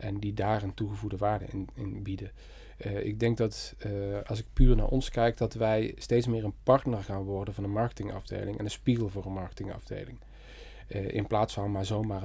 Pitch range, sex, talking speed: 100-120 Hz, male, 210 wpm